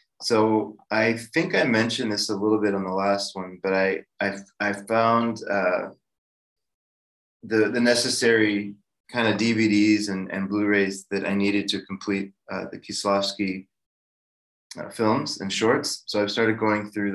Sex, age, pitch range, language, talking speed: male, 20-39, 100-115 Hz, English, 155 wpm